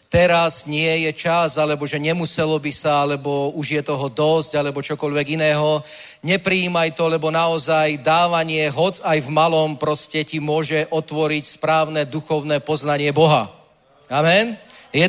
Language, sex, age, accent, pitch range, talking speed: Czech, male, 30-49, native, 150-175 Hz, 145 wpm